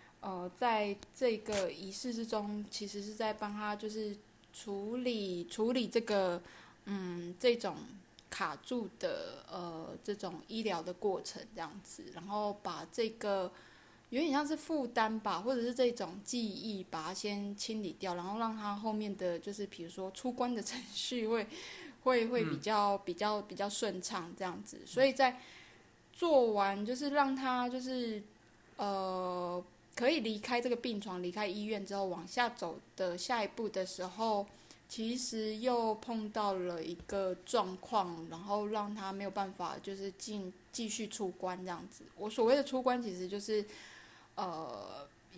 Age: 20-39